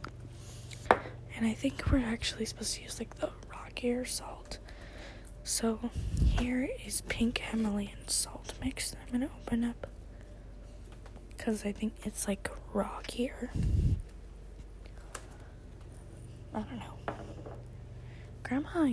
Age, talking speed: 10-29, 110 wpm